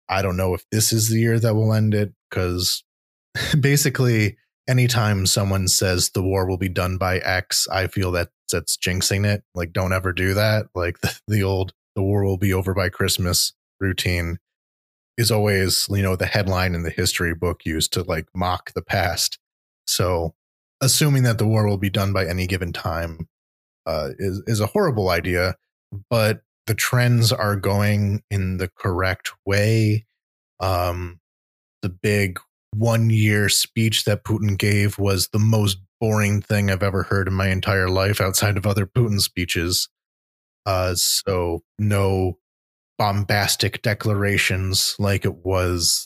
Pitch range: 90-105 Hz